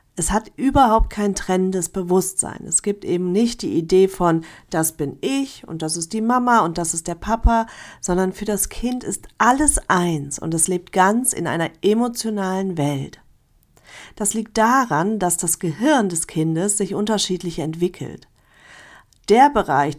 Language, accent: German, German